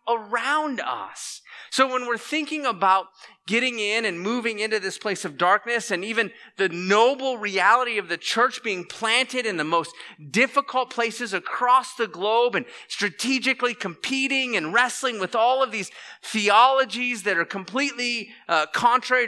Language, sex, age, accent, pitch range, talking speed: English, male, 30-49, American, 185-250 Hz, 155 wpm